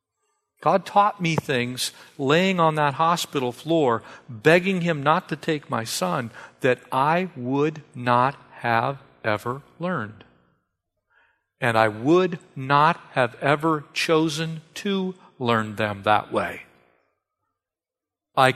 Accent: American